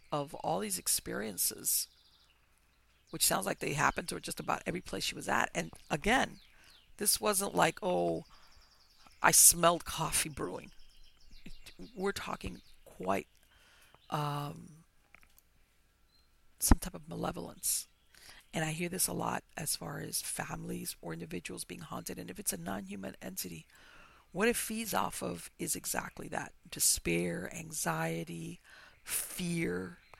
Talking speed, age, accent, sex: 135 wpm, 50-69, American, female